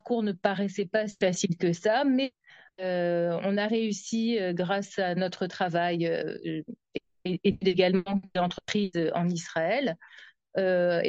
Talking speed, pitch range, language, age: 140 wpm, 180-215 Hz, French, 40-59